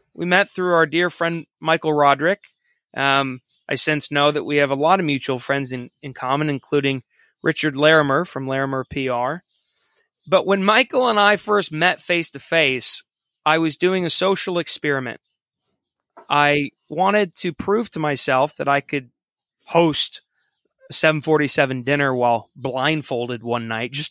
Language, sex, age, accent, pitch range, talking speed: English, male, 30-49, American, 140-185 Hz, 155 wpm